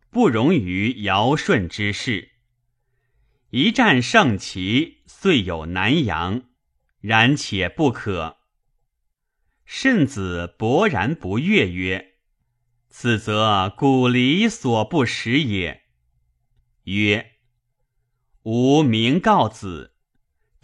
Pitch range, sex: 95-140 Hz, male